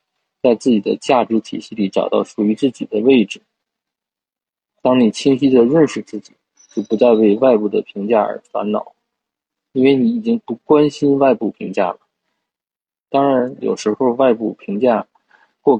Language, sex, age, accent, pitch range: Chinese, male, 20-39, native, 110-135 Hz